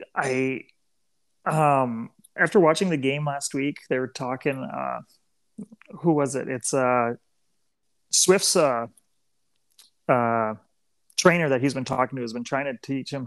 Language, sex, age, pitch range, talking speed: English, male, 30-49, 125-155 Hz, 145 wpm